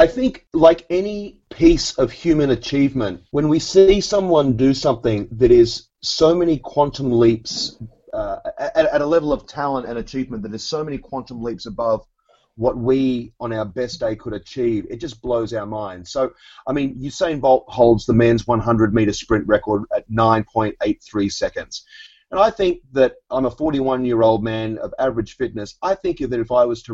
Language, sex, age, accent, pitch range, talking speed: English, male, 30-49, Australian, 115-165 Hz, 180 wpm